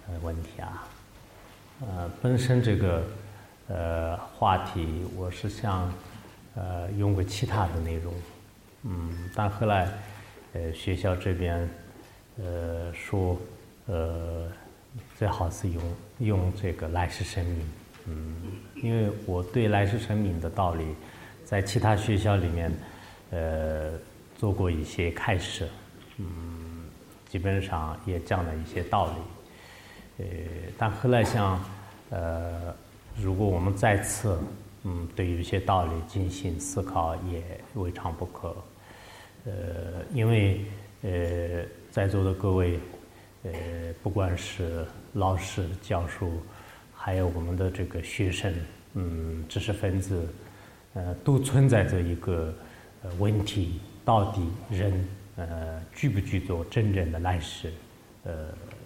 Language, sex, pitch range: English, male, 85-105 Hz